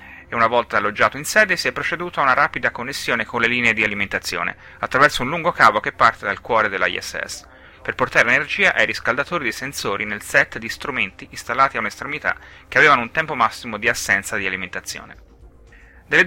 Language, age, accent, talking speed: Italian, 30-49, native, 190 wpm